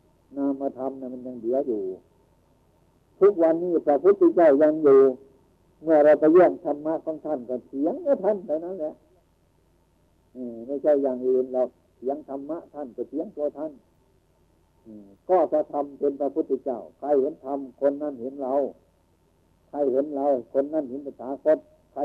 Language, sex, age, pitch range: Thai, male, 60-79, 110-145 Hz